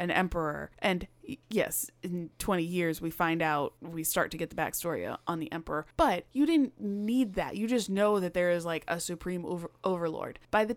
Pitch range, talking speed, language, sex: 175-225 Hz, 205 wpm, English, female